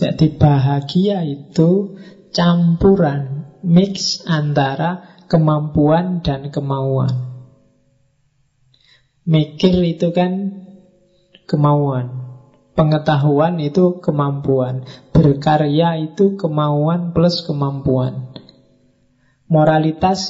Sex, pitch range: male, 145-180 Hz